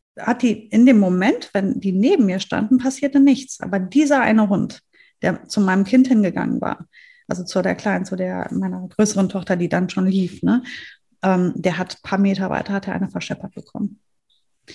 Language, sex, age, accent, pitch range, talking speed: German, female, 30-49, German, 190-225 Hz, 185 wpm